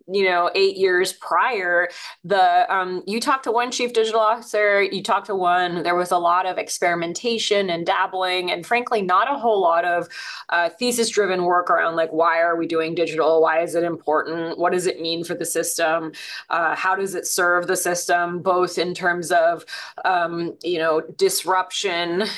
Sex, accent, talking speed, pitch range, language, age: female, American, 190 wpm, 175-215 Hz, English, 20-39